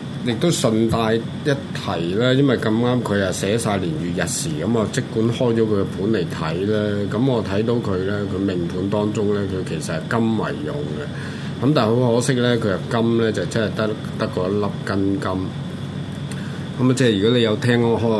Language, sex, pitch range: Chinese, male, 100-125 Hz